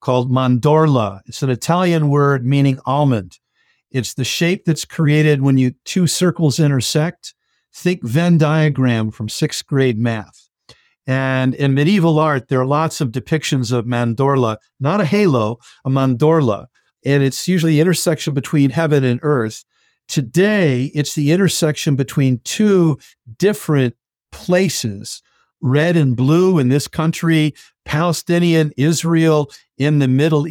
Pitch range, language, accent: 130-165 Hz, English, American